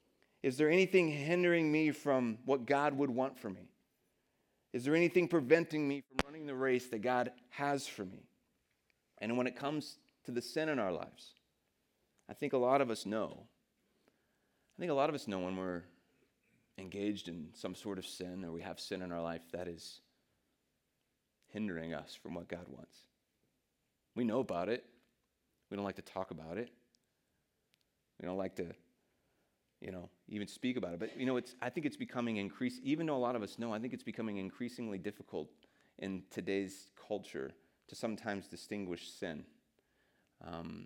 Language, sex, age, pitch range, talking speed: English, male, 30-49, 95-130 Hz, 180 wpm